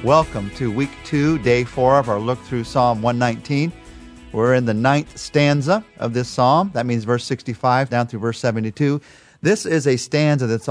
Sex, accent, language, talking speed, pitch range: male, American, English, 185 wpm, 100-135 Hz